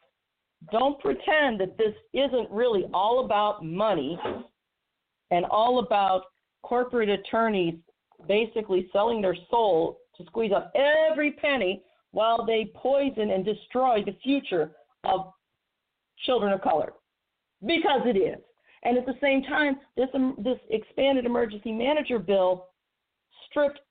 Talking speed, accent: 125 wpm, American